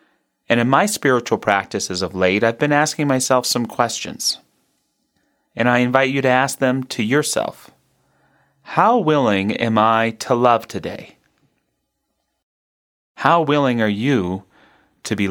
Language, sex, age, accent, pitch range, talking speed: English, male, 30-49, American, 105-140 Hz, 135 wpm